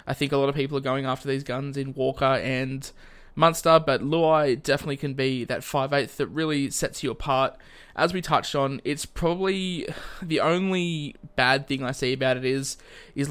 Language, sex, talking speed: English, male, 200 wpm